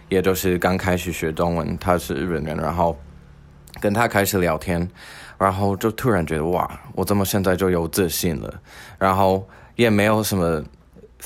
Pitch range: 85-100 Hz